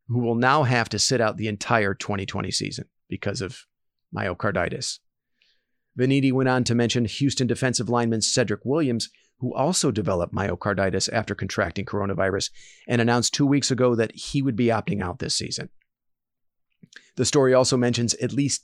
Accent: American